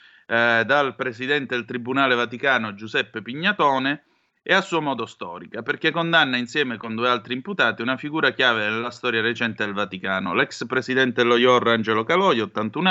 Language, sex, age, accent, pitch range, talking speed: Italian, male, 30-49, native, 110-140 Hz, 155 wpm